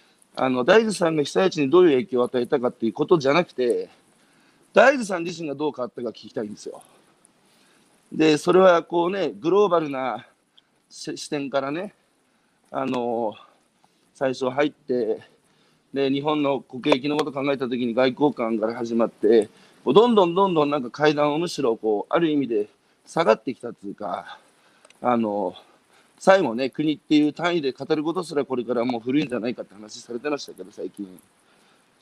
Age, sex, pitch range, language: 40-59, male, 125-180 Hz, Japanese